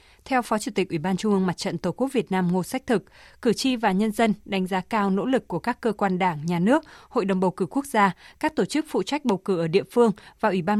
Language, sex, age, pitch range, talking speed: Vietnamese, female, 20-39, 190-235 Hz, 295 wpm